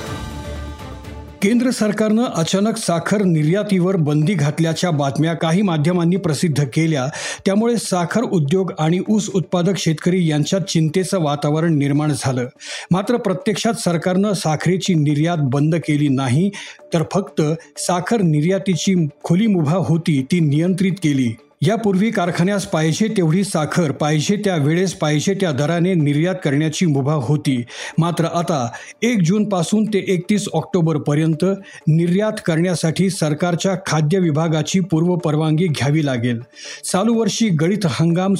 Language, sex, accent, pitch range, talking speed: Marathi, male, native, 150-190 Hz, 115 wpm